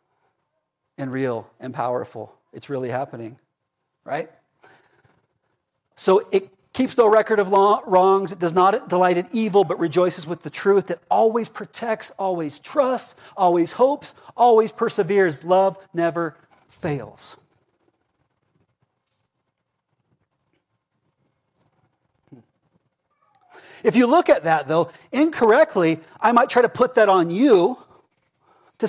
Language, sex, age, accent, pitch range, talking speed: English, male, 40-59, American, 140-210 Hz, 110 wpm